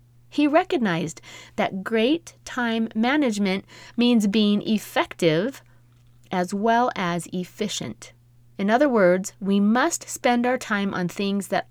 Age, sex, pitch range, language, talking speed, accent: 30-49, female, 170-230 Hz, English, 125 wpm, American